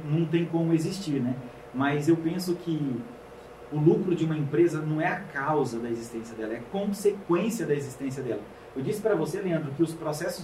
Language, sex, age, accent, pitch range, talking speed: Portuguese, male, 40-59, Brazilian, 155-200 Hz, 195 wpm